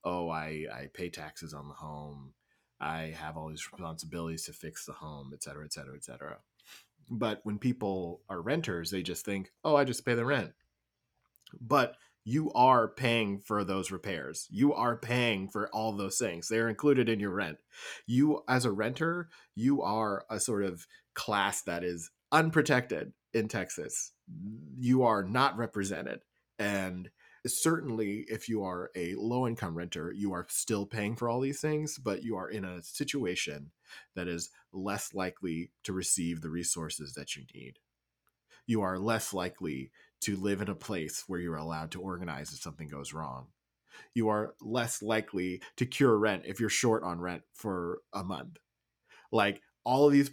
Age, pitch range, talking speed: 30-49, 85-115 Hz, 175 wpm